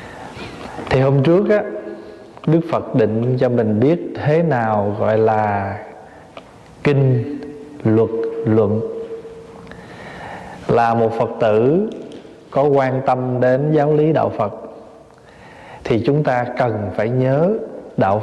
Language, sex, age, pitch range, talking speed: Vietnamese, male, 20-39, 115-150 Hz, 115 wpm